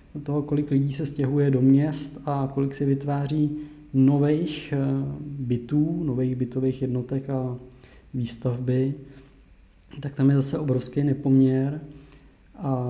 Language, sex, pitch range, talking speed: Czech, male, 130-145 Hz, 115 wpm